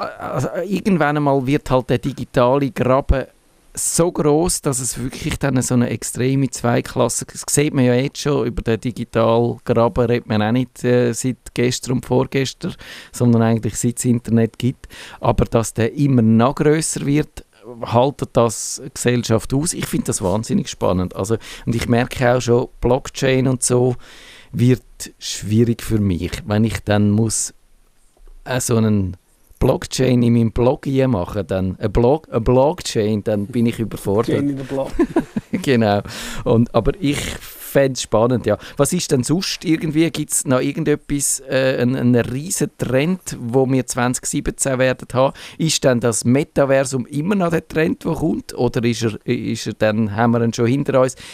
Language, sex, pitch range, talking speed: German, male, 115-135 Hz, 170 wpm